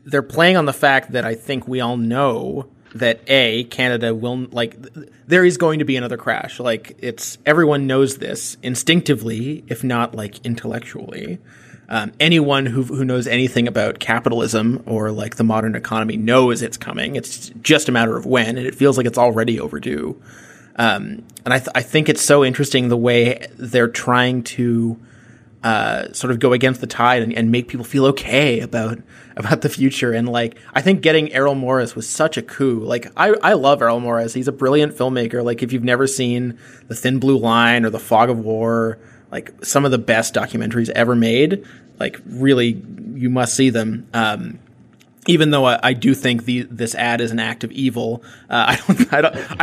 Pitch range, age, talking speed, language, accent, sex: 115-135 Hz, 30-49, 200 wpm, English, American, male